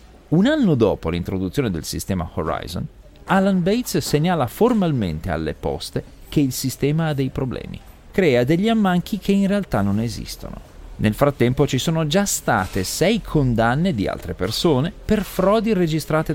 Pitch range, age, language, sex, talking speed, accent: 110-165 Hz, 40-59, Italian, male, 150 wpm, native